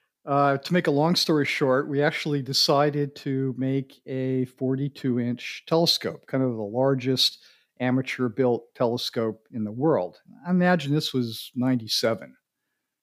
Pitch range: 130-155 Hz